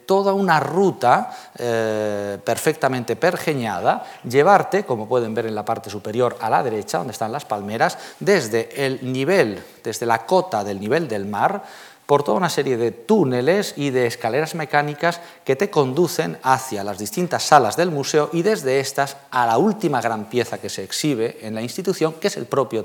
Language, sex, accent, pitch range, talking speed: Spanish, male, Spanish, 105-145 Hz, 180 wpm